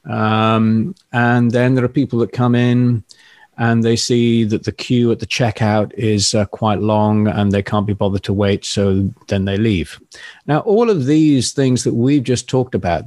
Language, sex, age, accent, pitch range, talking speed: English, male, 40-59, British, 100-125 Hz, 200 wpm